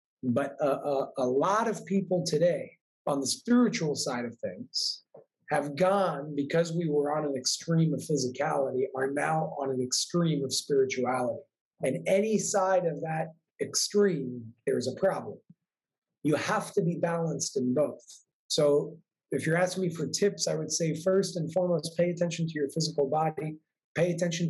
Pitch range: 145-185 Hz